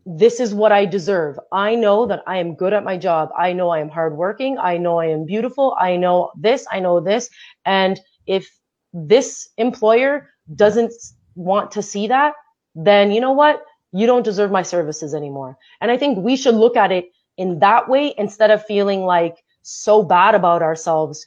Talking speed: 195 wpm